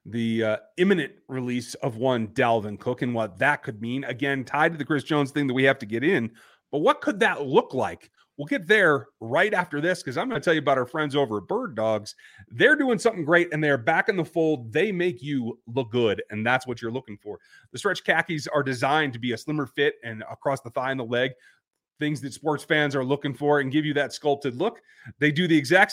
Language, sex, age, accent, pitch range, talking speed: English, male, 30-49, American, 115-155 Hz, 245 wpm